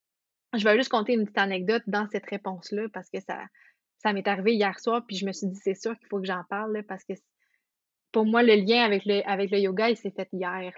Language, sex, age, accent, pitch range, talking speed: English, female, 20-39, Canadian, 200-235 Hz, 255 wpm